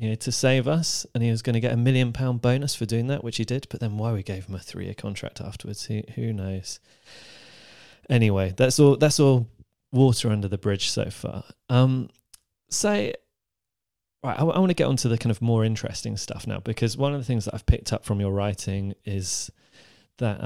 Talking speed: 220 wpm